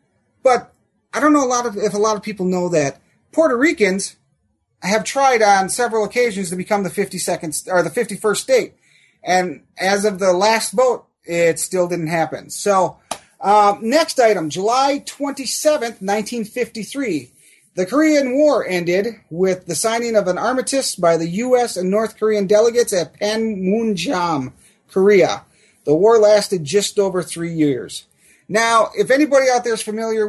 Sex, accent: male, American